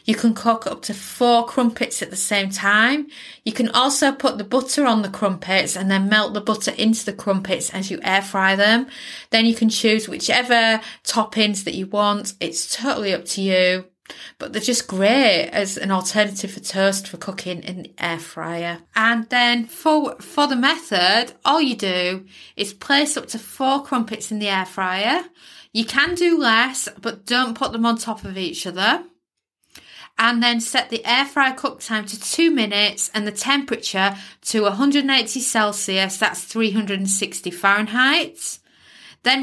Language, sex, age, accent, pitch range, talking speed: English, female, 30-49, British, 195-250 Hz, 175 wpm